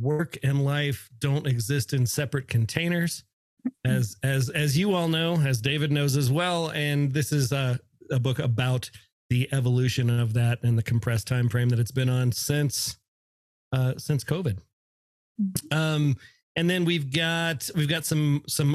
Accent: American